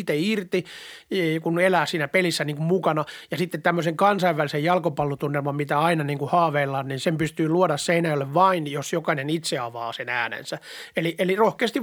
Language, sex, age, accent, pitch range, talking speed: Finnish, male, 30-49, native, 155-190 Hz, 155 wpm